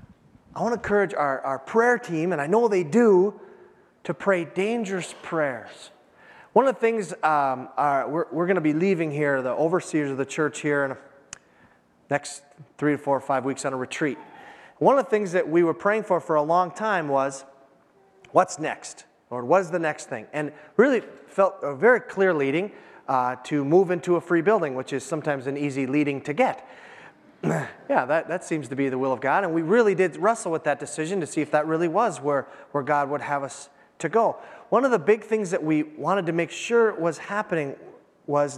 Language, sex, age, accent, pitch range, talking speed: English, male, 30-49, American, 140-190 Hz, 215 wpm